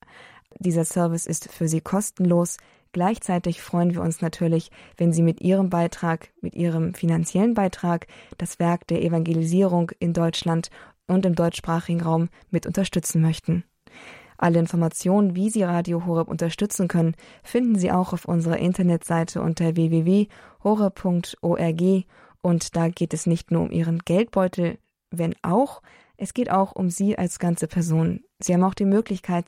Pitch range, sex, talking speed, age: 170-190 Hz, female, 150 wpm, 20-39